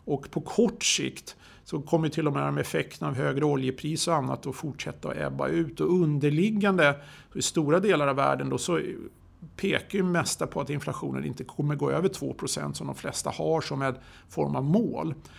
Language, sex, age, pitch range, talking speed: Swedish, male, 50-69, 135-175 Hz, 190 wpm